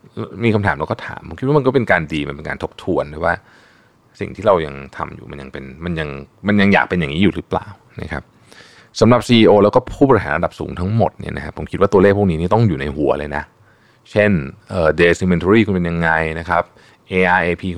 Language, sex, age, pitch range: Thai, male, 20-39, 75-110 Hz